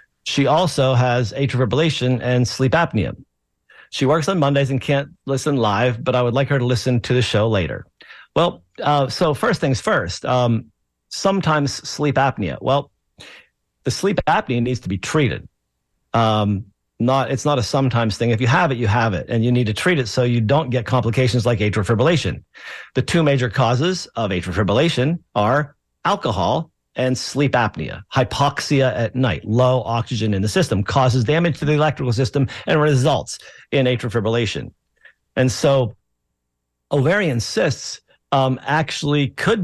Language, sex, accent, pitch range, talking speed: English, male, American, 110-140 Hz, 170 wpm